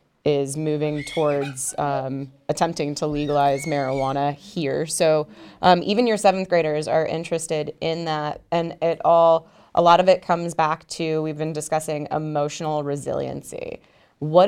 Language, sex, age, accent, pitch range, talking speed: English, female, 20-39, American, 145-170 Hz, 145 wpm